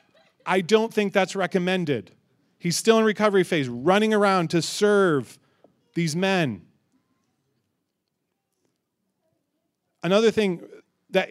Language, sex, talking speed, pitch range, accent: English, male, 100 wpm, 170-210 Hz, American